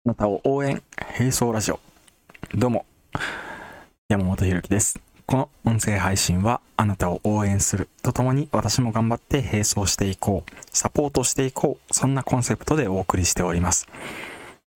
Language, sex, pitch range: Japanese, male, 95-135 Hz